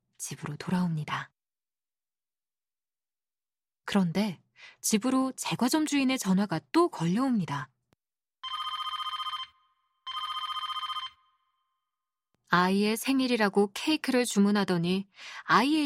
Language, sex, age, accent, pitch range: Korean, female, 20-39, native, 180-235 Hz